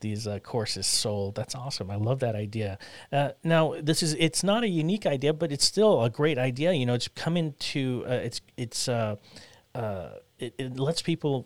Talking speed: 205 wpm